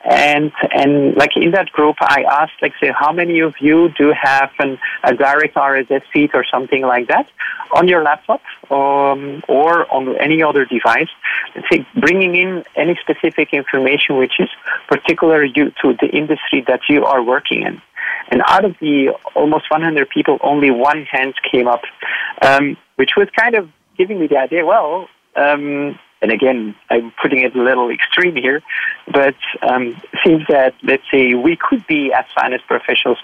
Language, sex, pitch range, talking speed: English, male, 130-155 Hz, 165 wpm